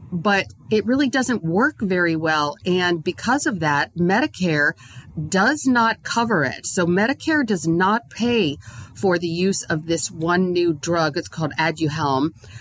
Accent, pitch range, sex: American, 155-210 Hz, female